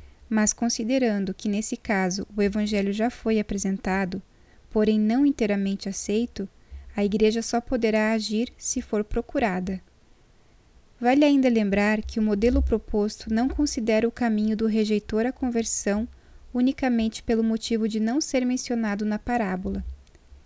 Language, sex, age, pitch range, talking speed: Portuguese, female, 10-29, 205-240 Hz, 135 wpm